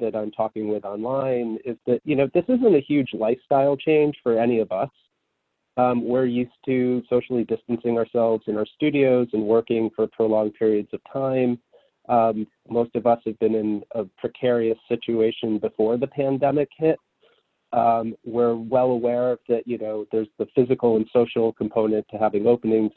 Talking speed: 170 wpm